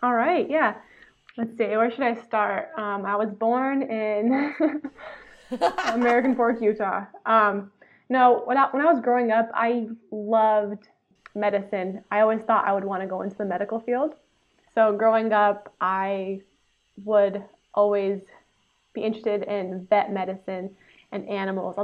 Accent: American